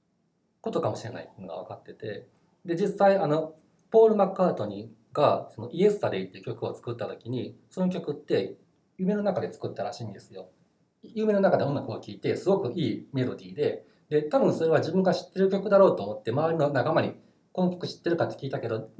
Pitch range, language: 115-185 Hz, Japanese